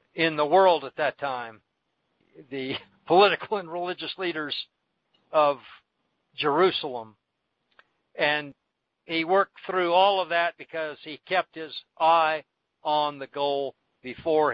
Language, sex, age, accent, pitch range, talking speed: English, male, 60-79, American, 140-170 Hz, 120 wpm